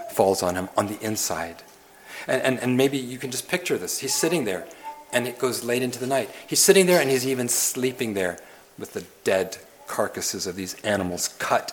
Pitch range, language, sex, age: 120-165 Hz, English, male, 40-59